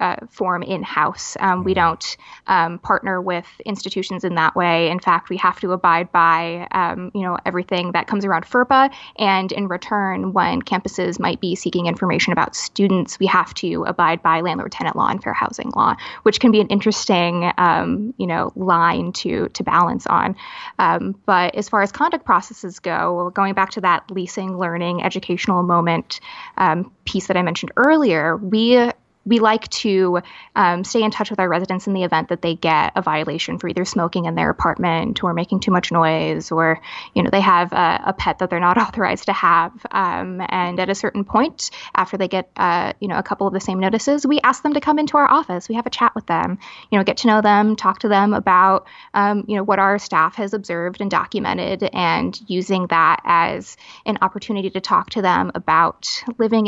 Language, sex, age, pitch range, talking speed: English, female, 20-39, 175-215 Hz, 205 wpm